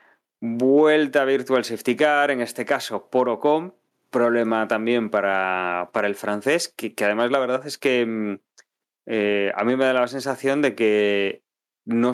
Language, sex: Spanish, male